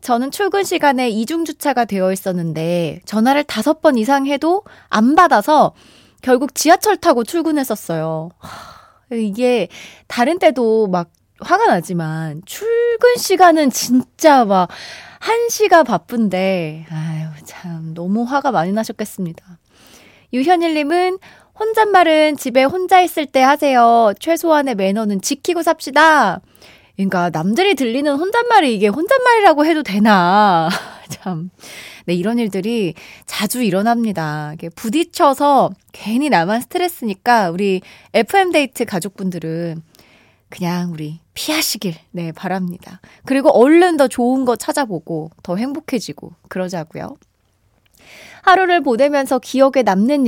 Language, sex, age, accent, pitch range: Korean, female, 20-39, native, 185-305 Hz